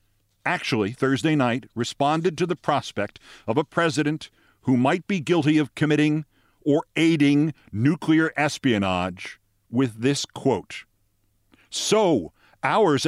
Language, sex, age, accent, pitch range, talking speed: English, male, 50-69, American, 105-150 Hz, 115 wpm